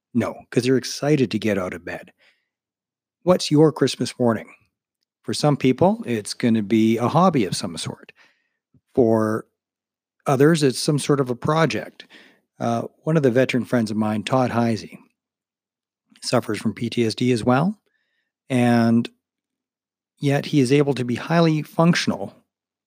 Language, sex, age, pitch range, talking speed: English, male, 40-59, 115-150 Hz, 150 wpm